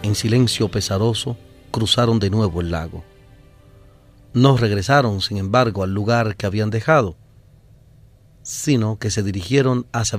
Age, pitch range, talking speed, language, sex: 40-59, 105-125 Hz, 130 wpm, Spanish, male